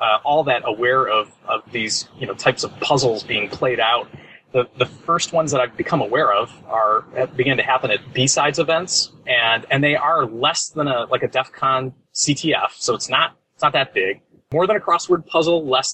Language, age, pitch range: English, 30-49, 125-160 Hz